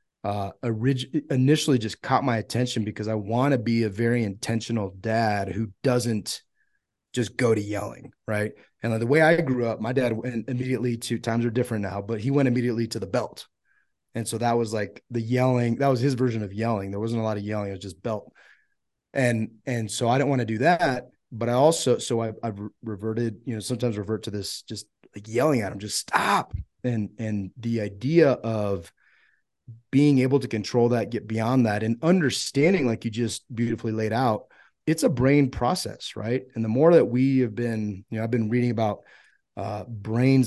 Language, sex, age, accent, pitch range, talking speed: English, male, 30-49, American, 110-125 Hz, 205 wpm